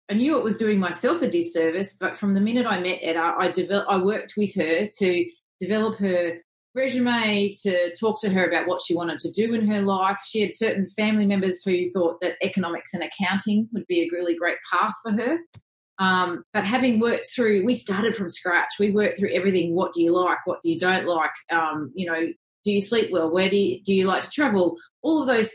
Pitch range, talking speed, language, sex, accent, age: 175-210 Hz, 230 wpm, English, female, Australian, 30-49